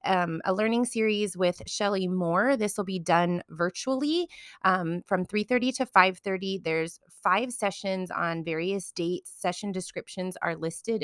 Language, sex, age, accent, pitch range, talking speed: English, female, 20-39, American, 170-200 Hz, 145 wpm